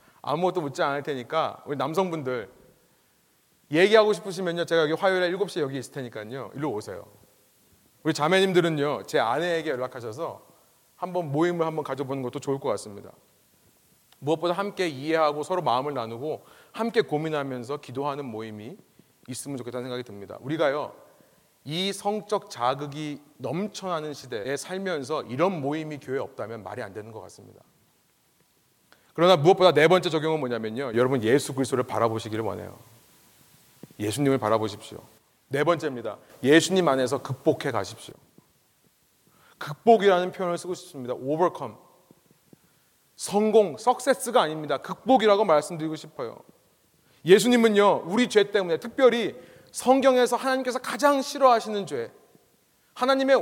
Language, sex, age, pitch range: Korean, male, 30-49, 135-205 Hz